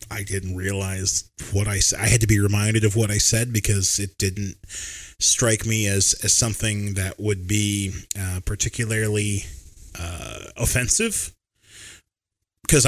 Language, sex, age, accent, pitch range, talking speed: English, male, 30-49, American, 100-125 Hz, 145 wpm